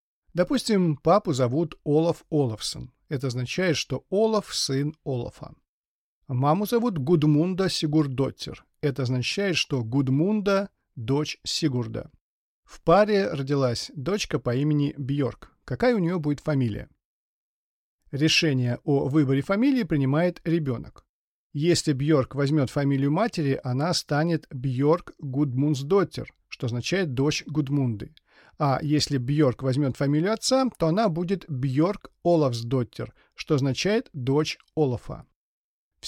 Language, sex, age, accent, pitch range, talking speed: Russian, male, 40-59, native, 135-170 Hz, 115 wpm